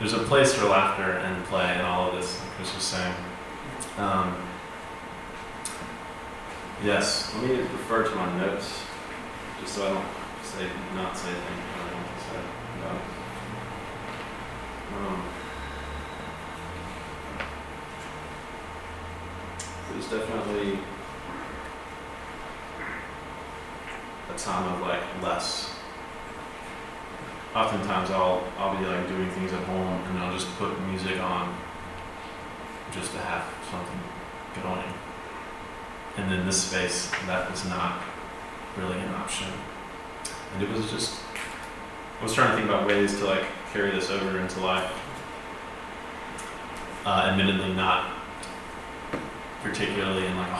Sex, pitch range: male, 90-95 Hz